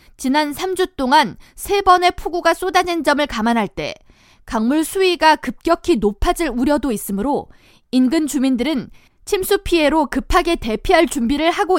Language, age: Korean, 20-39